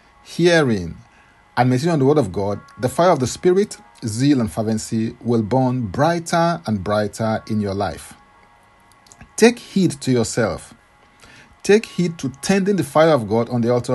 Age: 50-69